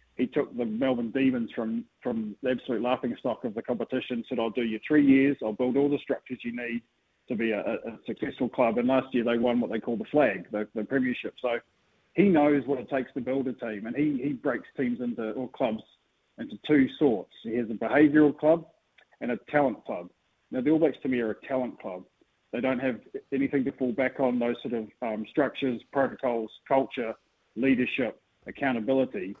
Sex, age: male, 40-59